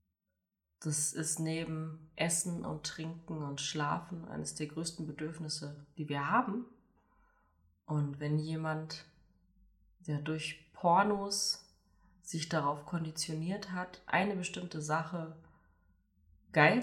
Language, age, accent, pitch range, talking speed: German, 30-49, German, 125-170 Hz, 105 wpm